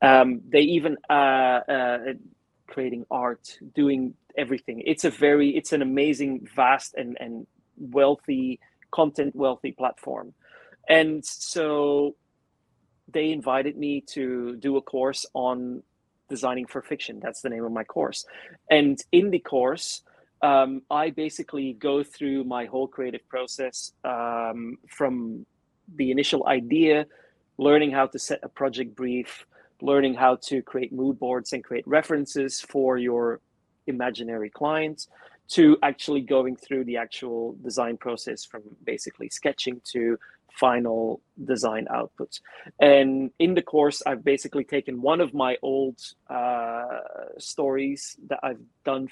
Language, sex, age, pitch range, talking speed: English, male, 30-49, 125-145 Hz, 135 wpm